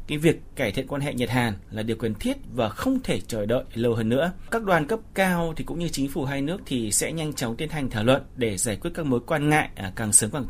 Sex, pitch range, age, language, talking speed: male, 115-145 Hz, 30-49, Vietnamese, 280 wpm